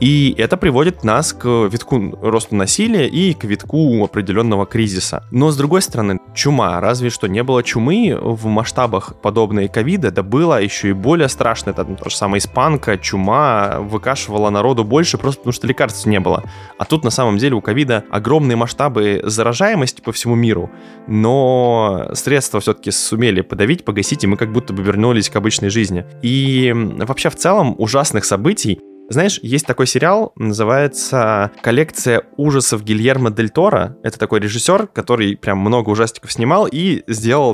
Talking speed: 160 wpm